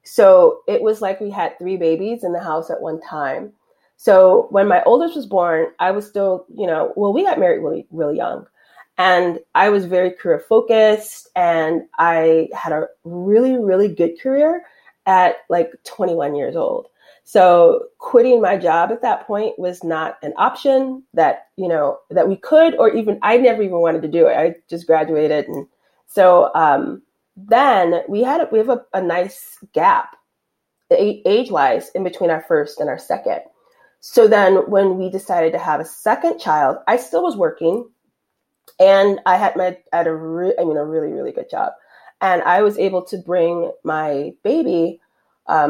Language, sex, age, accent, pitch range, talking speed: English, female, 30-49, American, 170-245 Hz, 180 wpm